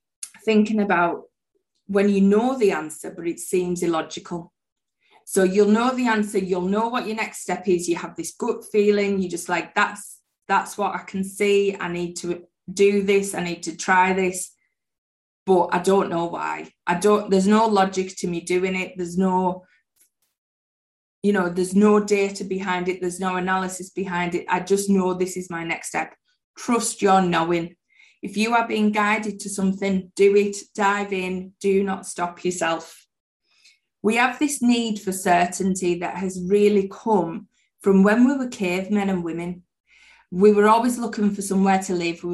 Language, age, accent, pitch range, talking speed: English, 20-39, British, 175-205 Hz, 180 wpm